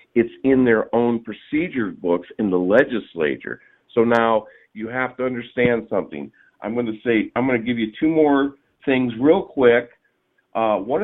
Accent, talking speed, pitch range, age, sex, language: American, 165 wpm, 105-135 Hz, 50-69, male, English